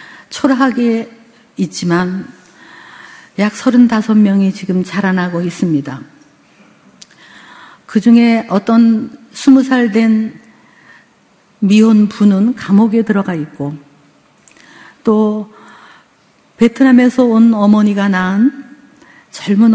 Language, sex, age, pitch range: Korean, female, 50-69, 190-240 Hz